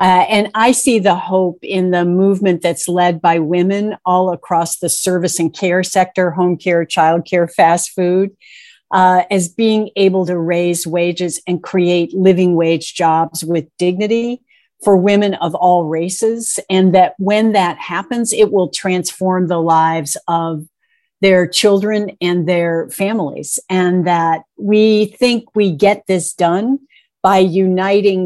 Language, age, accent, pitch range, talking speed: English, 50-69, American, 170-195 Hz, 150 wpm